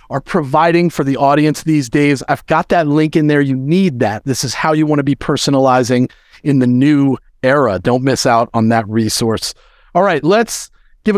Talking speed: 200 wpm